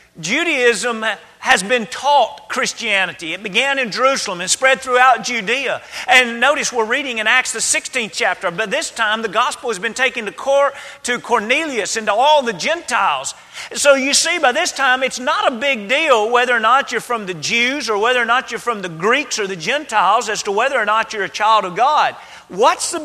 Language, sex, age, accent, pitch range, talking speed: English, male, 40-59, American, 185-245 Hz, 205 wpm